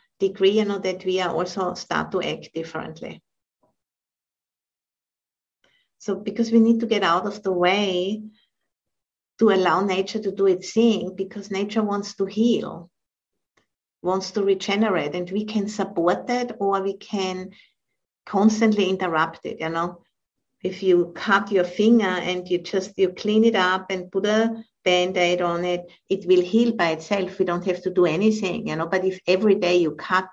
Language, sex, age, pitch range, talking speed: English, female, 50-69, 175-205 Hz, 170 wpm